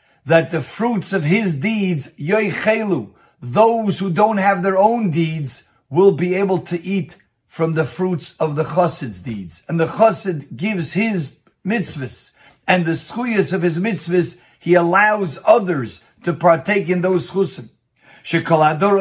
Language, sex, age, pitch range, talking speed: English, male, 50-69, 155-190 Hz, 145 wpm